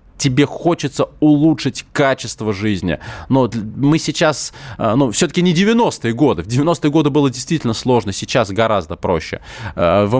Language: Russian